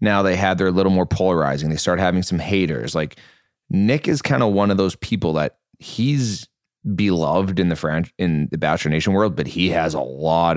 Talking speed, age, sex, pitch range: 215 wpm, 20-39, male, 80-95 Hz